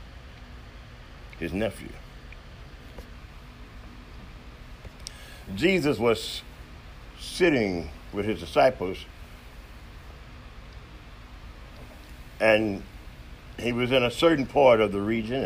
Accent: American